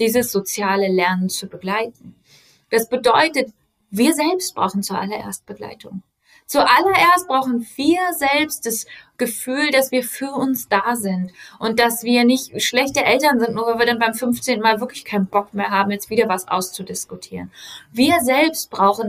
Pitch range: 195-260 Hz